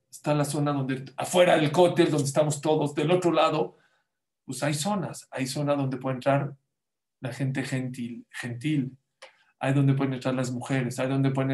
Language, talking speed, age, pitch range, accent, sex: English, 175 wpm, 50-69, 135-170 Hz, Mexican, male